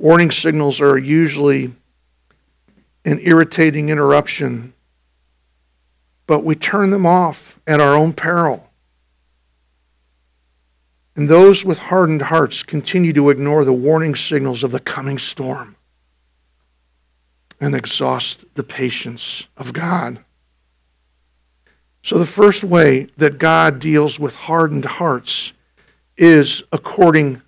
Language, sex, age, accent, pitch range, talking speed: English, male, 50-69, American, 120-175 Hz, 105 wpm